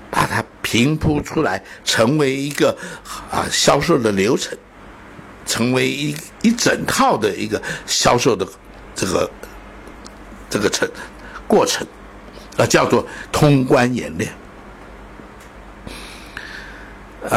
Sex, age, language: male, 60-79, Chinese